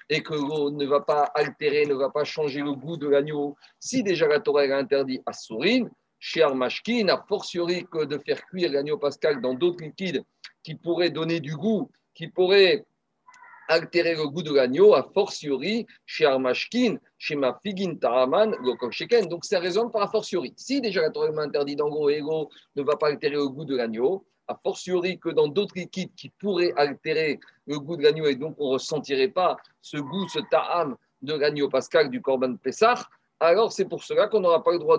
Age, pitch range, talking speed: 50-69, 150-230 Hz, 200 wpm